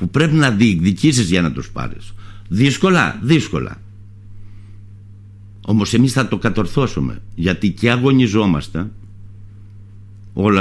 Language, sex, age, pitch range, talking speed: Greek, male, 60-79, 100-150 Hz, 105 wpm